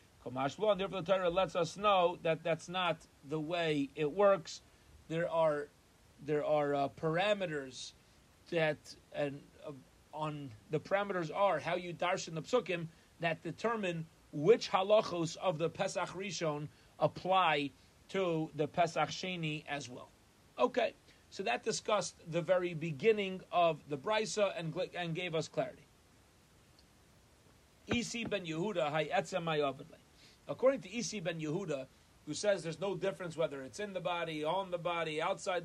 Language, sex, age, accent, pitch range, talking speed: English, male, 40-59, American, 150-195 Hz, 145 wpm